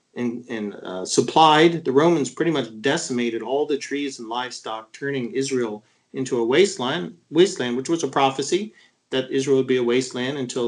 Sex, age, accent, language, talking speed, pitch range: male, 40-59, American, English, 175 wpm, 125-160 Hz